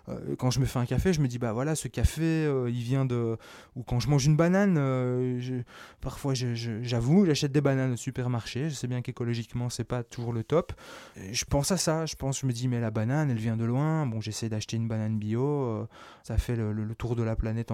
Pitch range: 105-130 Hz